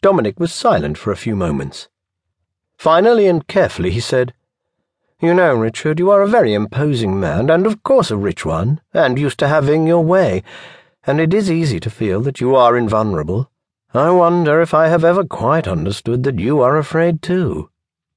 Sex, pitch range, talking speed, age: male, 110-165 Hz, 185 wpm, 50-69